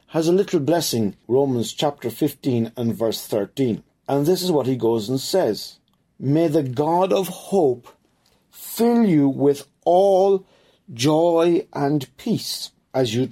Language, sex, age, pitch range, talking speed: English, male, 50-69, 140-195 Hz, 145 wpm